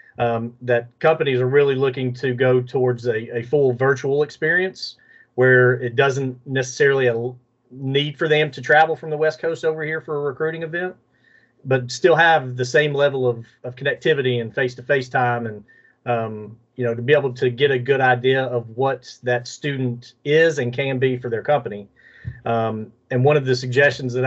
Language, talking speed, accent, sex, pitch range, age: English, 195 wpm, American, male, 120-140 Hz, 40-59